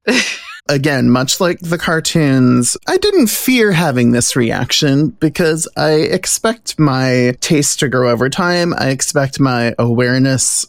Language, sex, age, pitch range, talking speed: English, male, 20-39, 125-165 Hz, 135 wpm